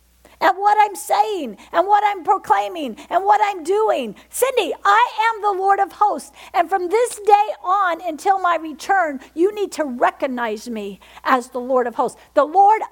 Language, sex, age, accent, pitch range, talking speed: English, female, 50-69, American, 265-400 Hz, 180 wpm